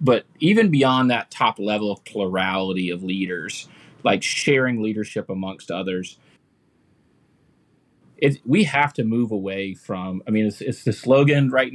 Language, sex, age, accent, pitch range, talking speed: English, male, 30-49, American, 95-120 Hz, 140 wpm